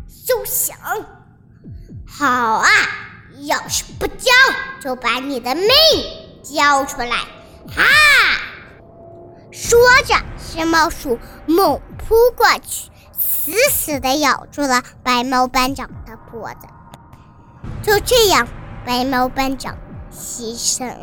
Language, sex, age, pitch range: Chinese, male, 10-29, 255-380 Hz